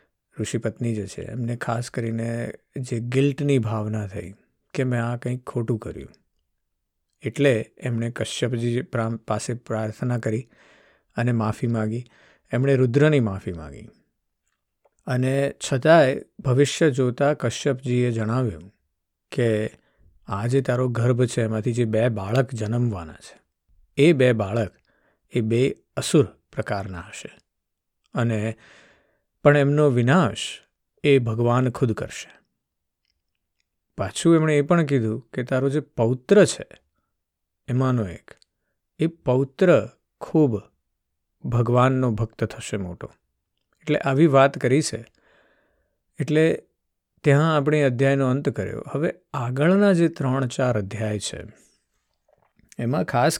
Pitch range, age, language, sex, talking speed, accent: 110-140 Hz, 50-69, Gujarati, male, 85 wpm, native